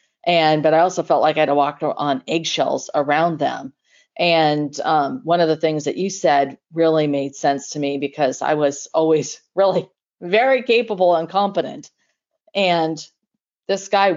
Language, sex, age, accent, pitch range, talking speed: English, female, 40-59, American, 150-180 Hz, 170 wpm